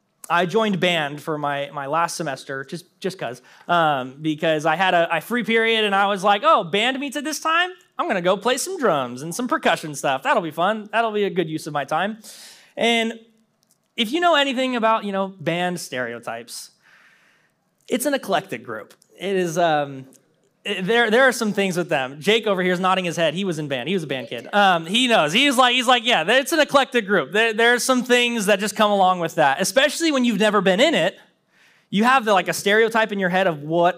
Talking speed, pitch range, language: 235 wpm, 165-235 Hz, English